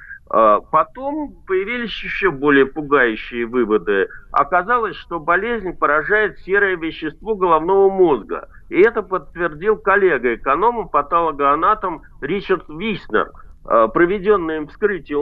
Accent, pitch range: native, 150-215 Hz